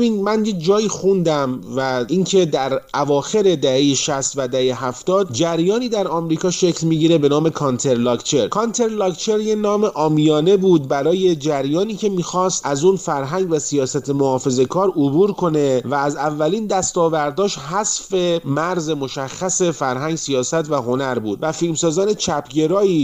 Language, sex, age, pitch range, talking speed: Persian, male, 30-49, 135-185 Hz, 140 wpm